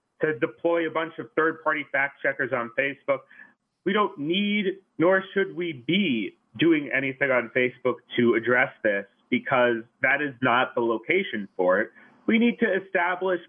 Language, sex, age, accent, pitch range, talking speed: English, male, 30-49, American, 125-195 Hz, 165 wpm